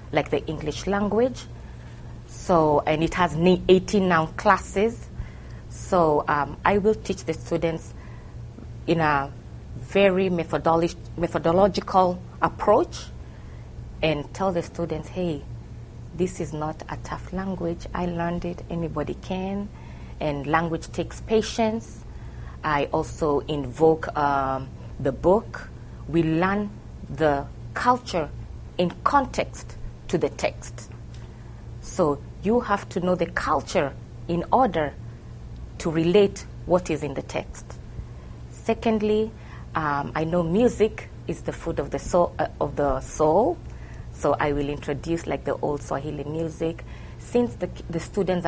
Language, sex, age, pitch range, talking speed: English, female, 30-49, 145-185 Hz, 125 wpm